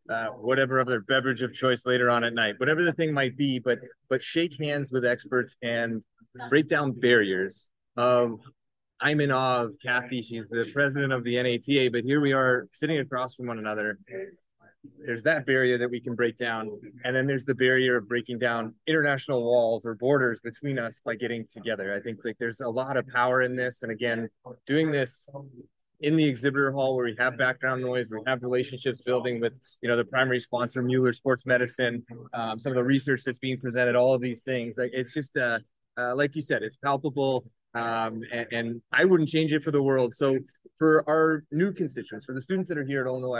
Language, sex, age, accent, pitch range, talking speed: English, male, 30-49, American, 120-140 Hz, 210 wpm